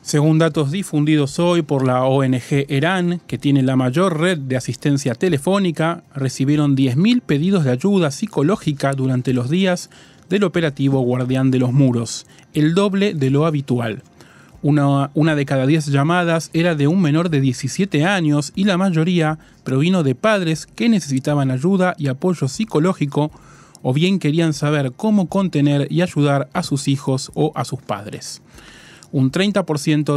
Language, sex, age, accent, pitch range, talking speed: Spanish, male, 30-49, Argentinian, 135-175 Hz, 155 wpm